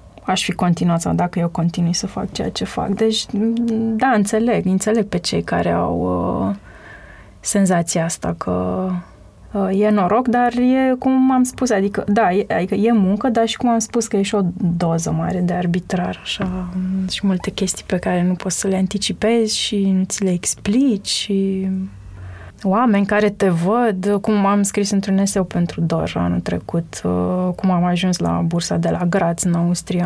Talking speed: 180 wpm